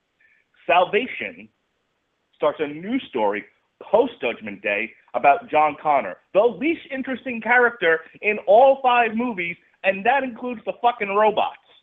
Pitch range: 150-250 Hz